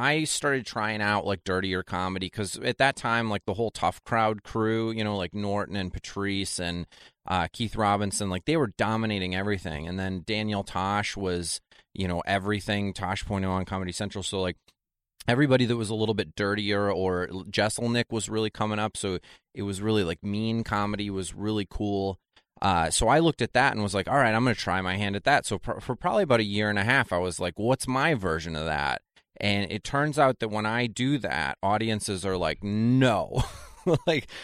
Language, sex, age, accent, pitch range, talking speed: English, male, 30-49, American, 95-110 Hz, 215 wpm